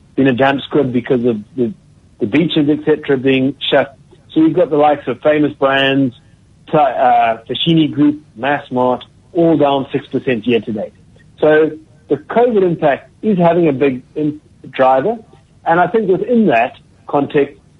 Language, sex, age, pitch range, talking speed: English, male, 50-69, 130-165 Hz, 150 wpm